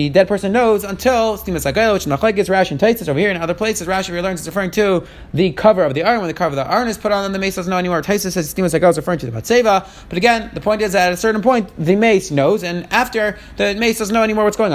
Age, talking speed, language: 30-49, 300 wpm, English